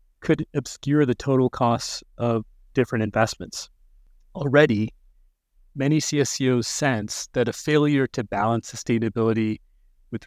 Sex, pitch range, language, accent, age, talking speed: male, 110-135 Hz, English, American, 30-49, 110 wpm